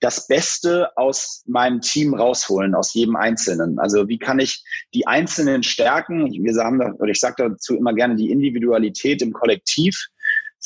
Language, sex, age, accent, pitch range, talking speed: German, male, 30-49, German, 115-160 Hz, 165 wpm